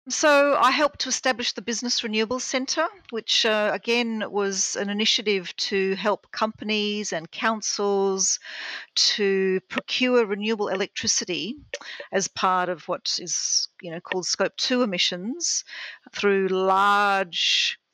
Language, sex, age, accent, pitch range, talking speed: English, female, 50-69, Australian, 175-220 Hz, 125 wpm